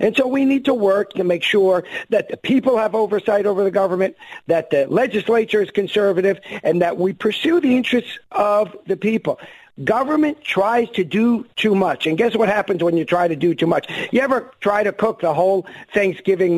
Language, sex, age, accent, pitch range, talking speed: English, male, 50-69, American, 185-245 Hz, 205 wpm